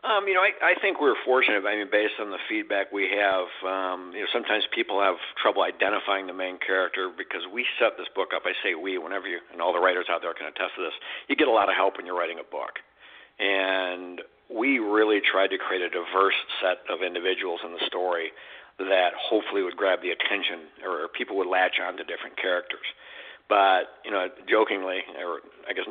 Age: 60-79